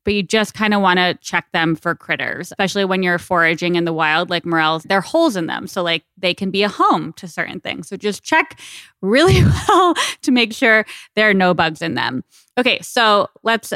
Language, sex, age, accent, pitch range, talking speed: English, female, 20-39, American, 170-215 Hz, 225 wpm